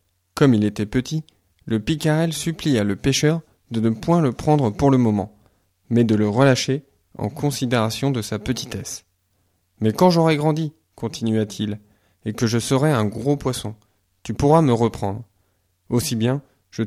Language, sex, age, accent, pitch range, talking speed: French, male, 20-39, French, 100-135 Hz, 170 wpm